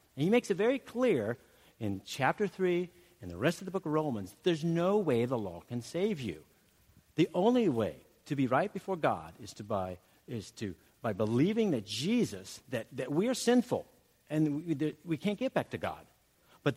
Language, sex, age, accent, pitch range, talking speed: English, male, 50-69, American, 105-175 Hz, 195 wpm